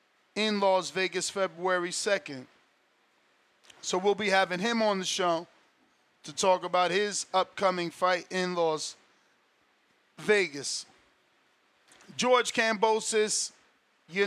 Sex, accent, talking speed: male, American, 105 wpm